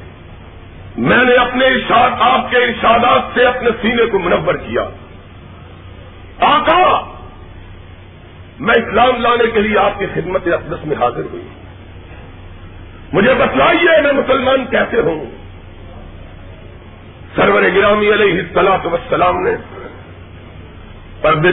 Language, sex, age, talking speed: Urdu, male, 50-69, 105 wpm